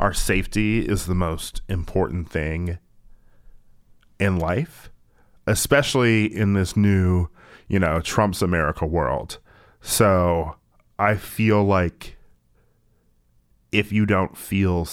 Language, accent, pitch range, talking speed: English, American, 85-105 Hz, 105 wpm